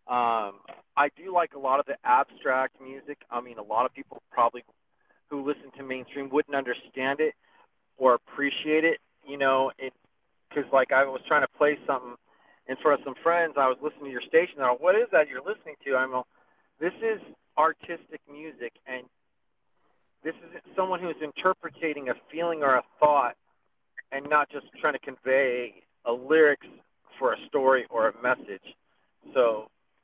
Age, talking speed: 40-59, 180 wpm